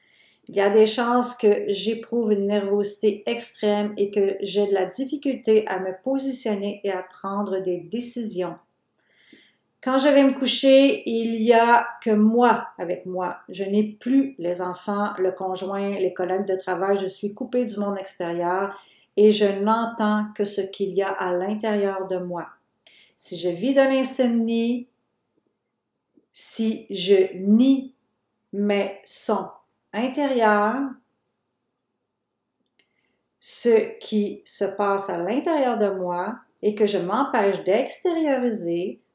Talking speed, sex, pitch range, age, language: 135 wpm, female, 190-235 Hz, 40-59, French